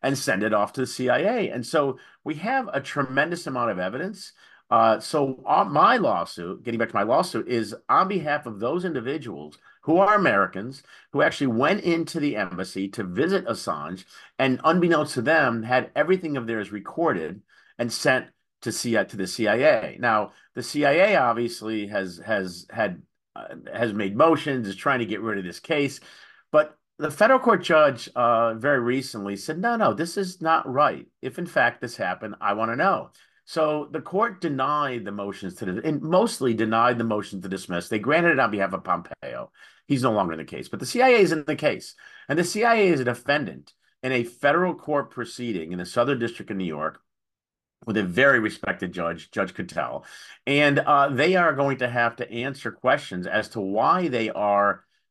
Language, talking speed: English, 195 wpm